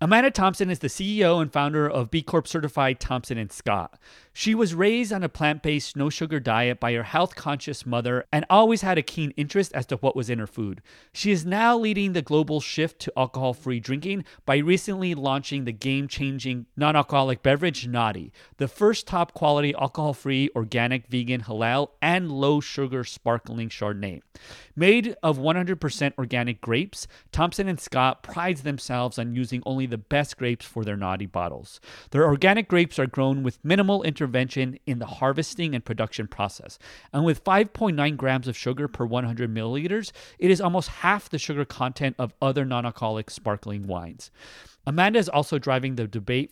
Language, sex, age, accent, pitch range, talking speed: English, male, 30-49, American, 125-170 Hz, 170 wpm